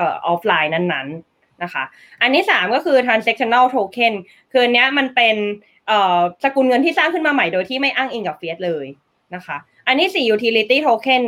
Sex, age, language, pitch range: female, 20-39, Thai, 180-245 Hz